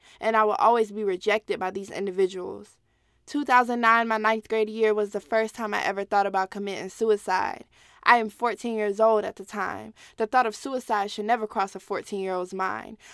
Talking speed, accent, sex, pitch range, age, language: 190 wpm, American, female, 195-230 Hz, 20-39, English